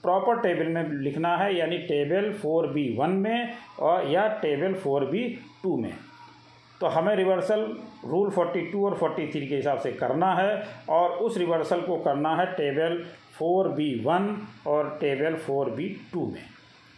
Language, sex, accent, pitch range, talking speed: Hindi, male, native, 155-195 Hz, 135 wpm